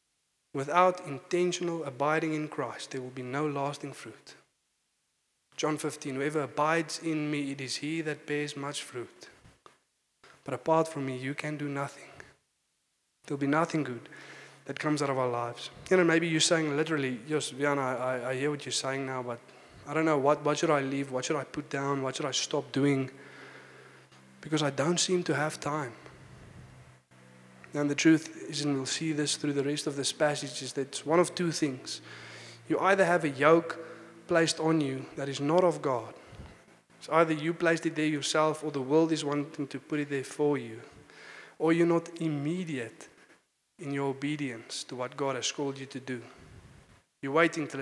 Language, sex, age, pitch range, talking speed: English, male, 20-39, 135-155 Hz, 190 wpm